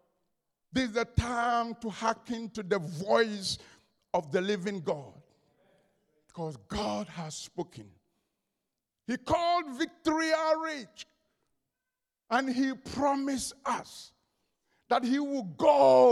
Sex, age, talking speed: male, 50-69, 110 wpm